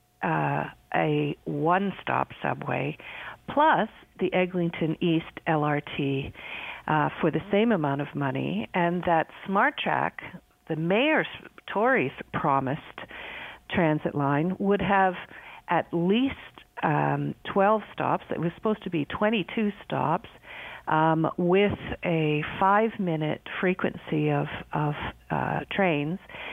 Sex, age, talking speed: female, 50-69, 110 wpm